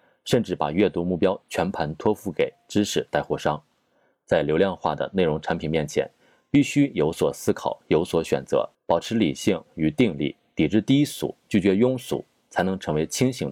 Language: Chinese